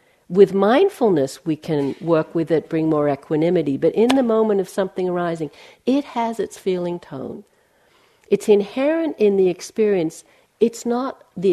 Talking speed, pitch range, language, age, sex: 155 wpm, 160-225 Hz, English, 60-79, female